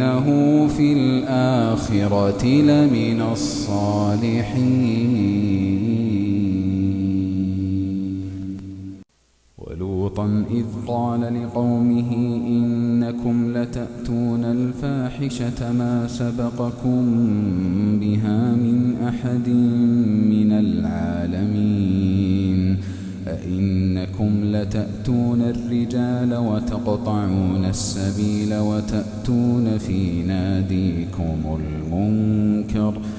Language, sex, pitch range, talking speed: Arabic, male, 95-120 Hz, 50 wpm